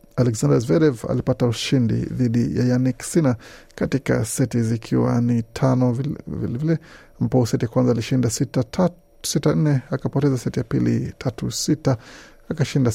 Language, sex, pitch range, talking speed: Swahili, male, 115-135 Hz, 140 wpm